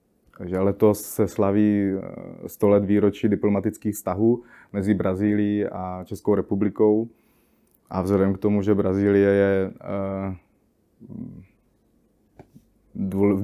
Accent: native